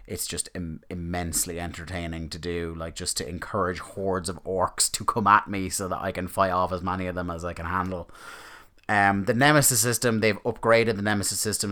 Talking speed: 210 wpm